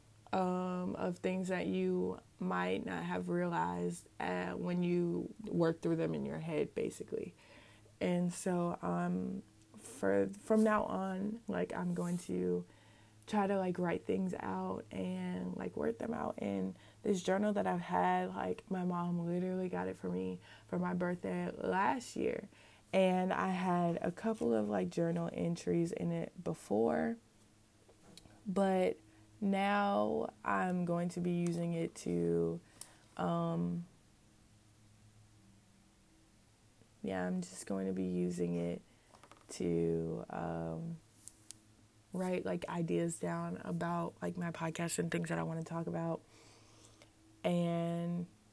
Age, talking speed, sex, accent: 20-39, 135 wpm, female, American